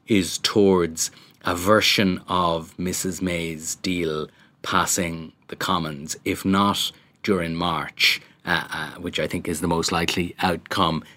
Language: English